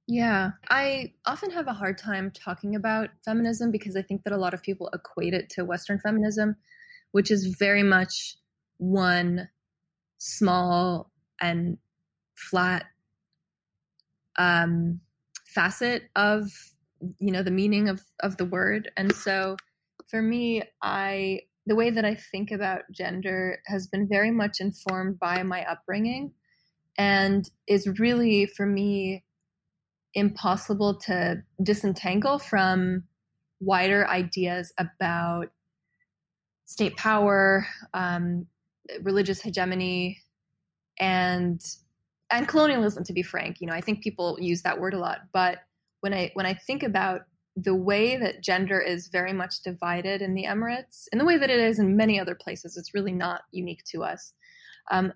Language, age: English, 20-39